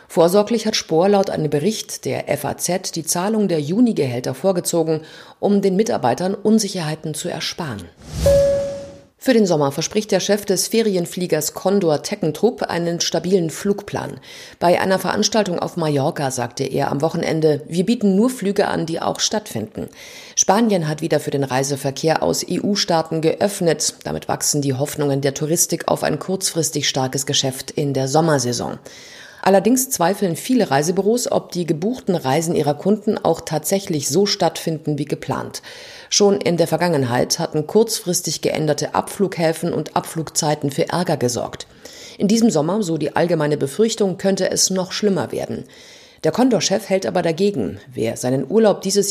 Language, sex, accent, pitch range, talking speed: German, female, German, 155-205 Hz, 150 wpm